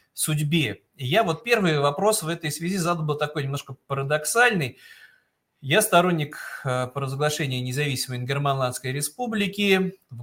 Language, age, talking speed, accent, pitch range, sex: Russian, 30-49, 115 wpm, native, 135-185 Hz, male